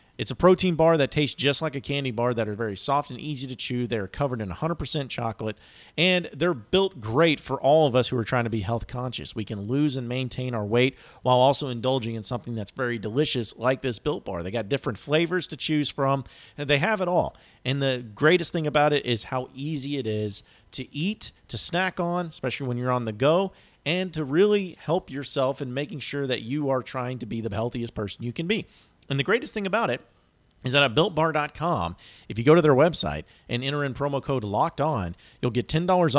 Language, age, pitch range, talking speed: English, 40-59, 115-150 Hz, 230 wpm